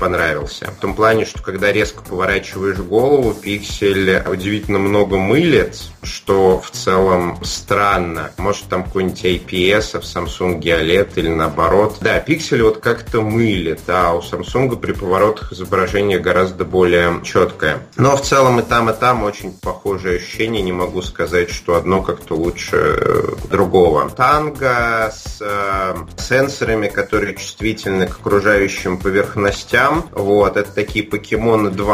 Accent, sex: native, male